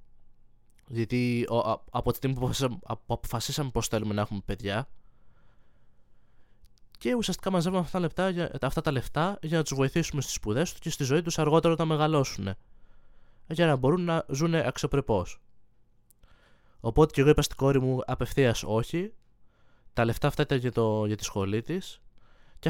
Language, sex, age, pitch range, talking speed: Greek, male, 20-39, 110-145 Hz, 155 wpm